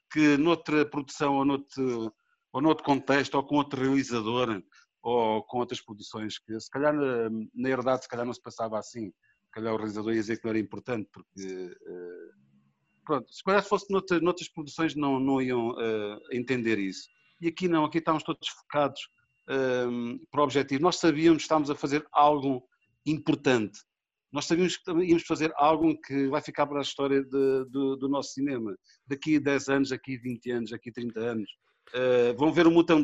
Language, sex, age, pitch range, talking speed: English, male, 50-69, 120-160 Hz, 180 wpm